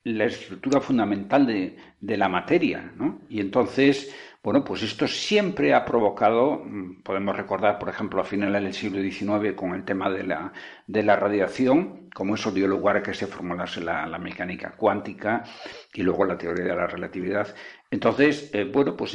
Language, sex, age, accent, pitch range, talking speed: Spanish, male, 60-79, Spanish, 95-120 Hz, 175 wpm